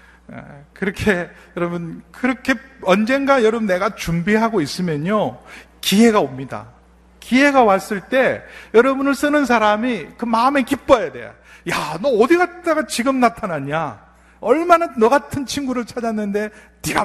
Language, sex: Korean, male